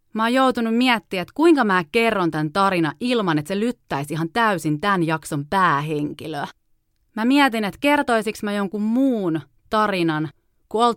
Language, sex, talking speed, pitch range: Finnish, female, 155 wpm, 155-215 Hz